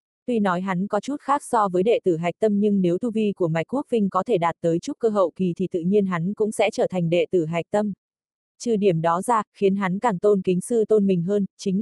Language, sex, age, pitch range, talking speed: Vietnamese, female, 20-39, 185-220 Hz, 275 wpm